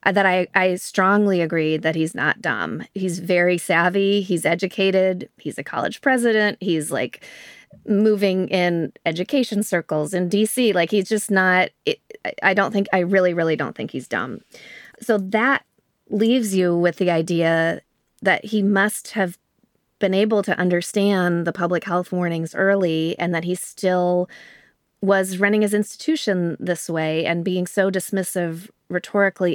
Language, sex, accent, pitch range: English, female, American, 165-200 Hz